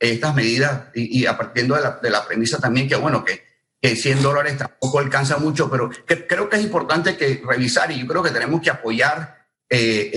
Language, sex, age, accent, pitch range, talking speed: Spanish, male, 50-69, Venezuelan, 125-155 Hz, 220 wpm